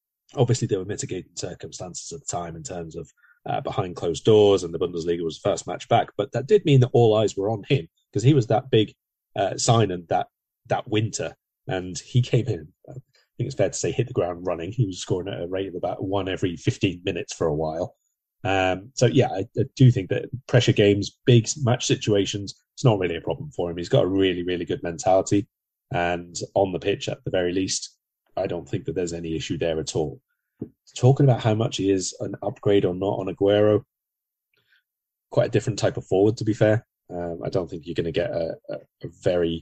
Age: 30-49